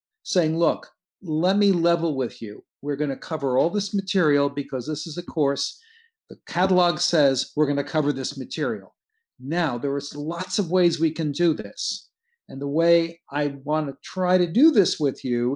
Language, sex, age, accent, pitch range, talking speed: English, male, 50-69, American, 140-180 Hz, 195 wpm